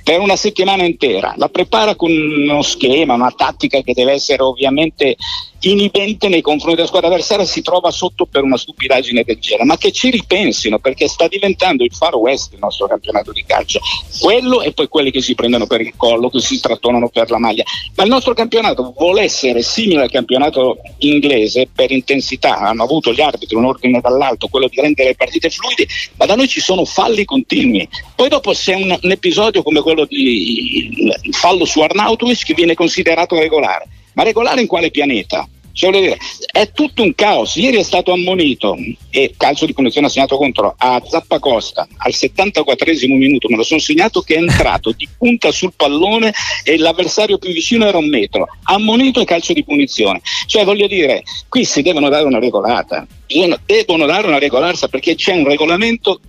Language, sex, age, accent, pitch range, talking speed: Italian, male, 50-69, native, 140-225 Hz, 190 wpm